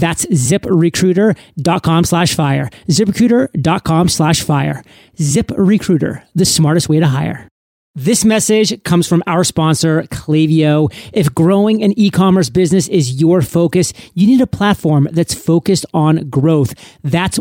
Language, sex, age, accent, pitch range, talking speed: English, male, 30-49, American, 165-195 Hz, 130 wpm